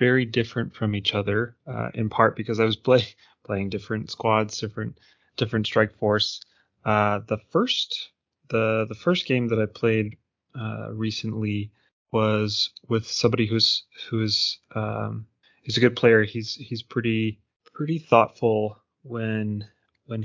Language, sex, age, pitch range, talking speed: English, male, 20-39, 105-120 Hz, 140 wpm